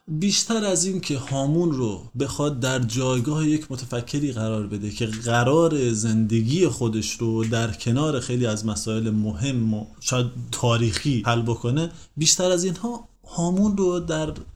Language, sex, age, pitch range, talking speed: Persian, male, 30-49, 120-150 Hz, 145 wpm